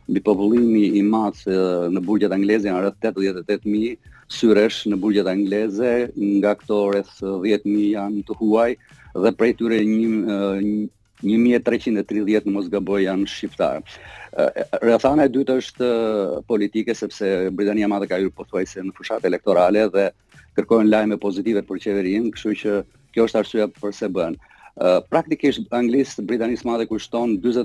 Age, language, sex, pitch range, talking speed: 40-59, English, male, 100-120 Hz, 135 wpm